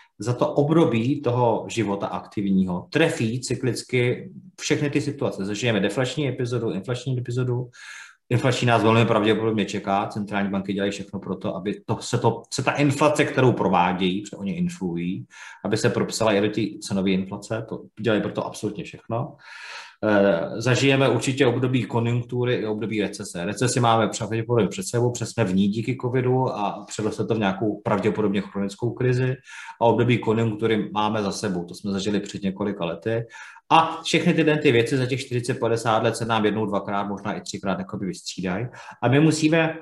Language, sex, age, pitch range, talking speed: Slovak, male, 30-49, 105-130 Hz, 160 wpm